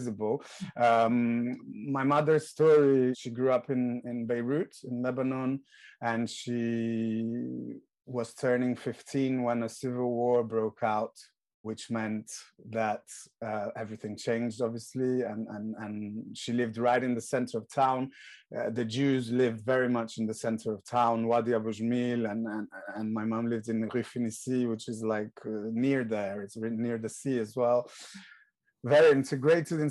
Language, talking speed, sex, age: English, 155 wpm, male, 30-49